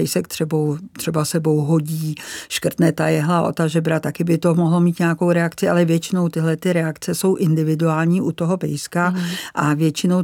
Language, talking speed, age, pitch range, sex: Czech, 170 wpm, 50-69, 160-175 Hz, female